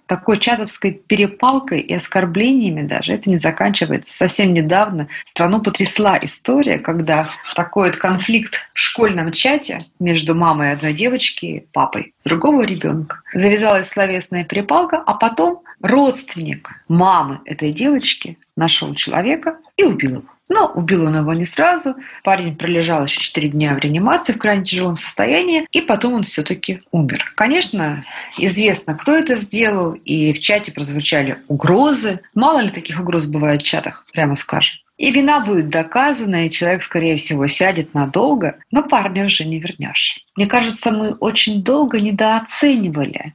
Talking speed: 145 wpm